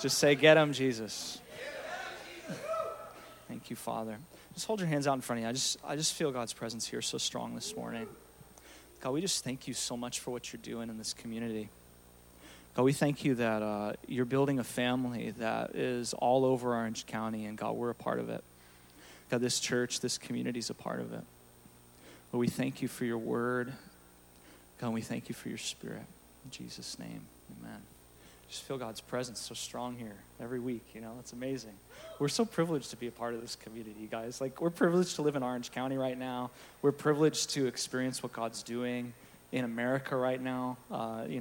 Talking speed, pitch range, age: 205 wpm, 115-135 Hz, 30-49